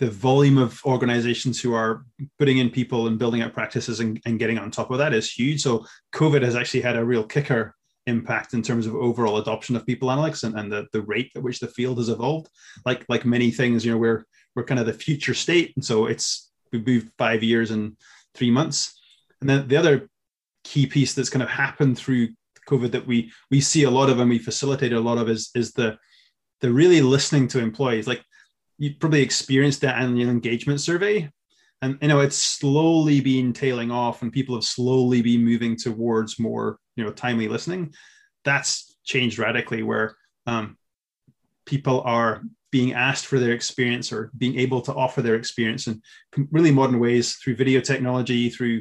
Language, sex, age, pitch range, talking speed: English, male, 20-39, 115-135 Hz, 200 wpm